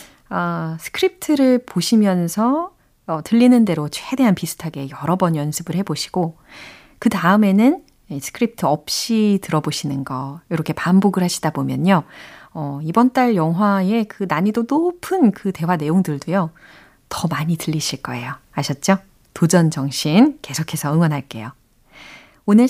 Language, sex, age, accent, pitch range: Korean, female, 30-49, native, 155-245 Hz